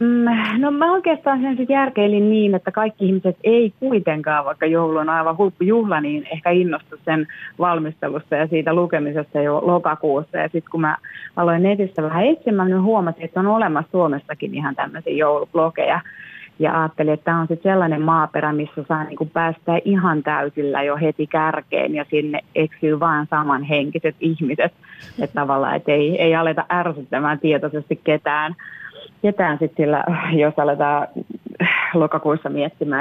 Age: 30-49